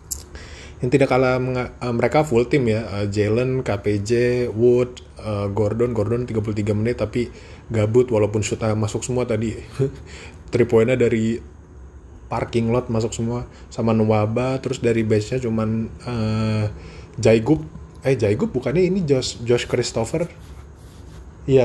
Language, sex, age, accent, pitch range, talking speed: Indonesian, male, 20-39, native, 95-120 Hz, 135 wpm